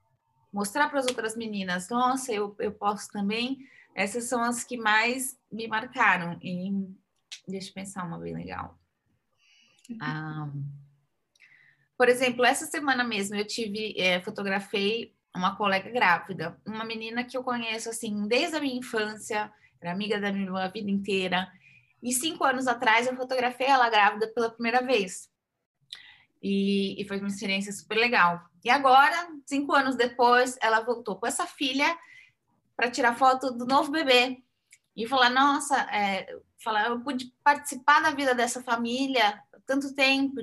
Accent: Brazilian